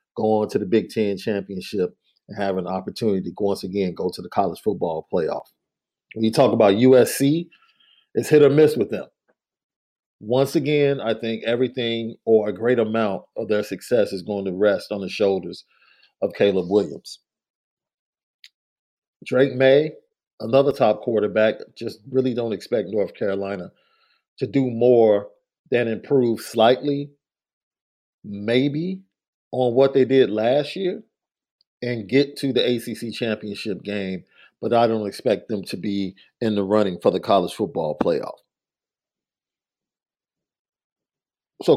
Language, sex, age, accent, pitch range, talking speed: English, male, 40-59, American, 105-145 Hz, 145 wpm